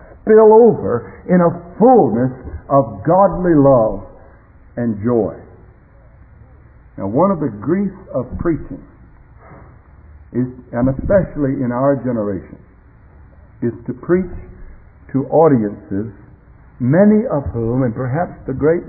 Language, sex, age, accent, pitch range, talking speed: English, male, 60-79, American, 110-170 Hz, 110 wpm